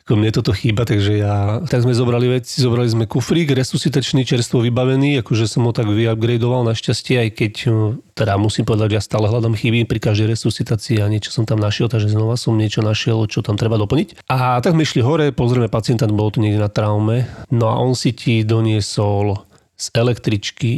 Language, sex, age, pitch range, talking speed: Slovak, male, 30-49, 110-125 Hz, 195 wpm